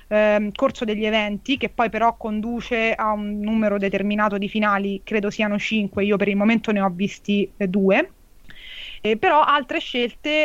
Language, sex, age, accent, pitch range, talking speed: Italian, female, 20-39, native, 205-240 Hz, 160 wpm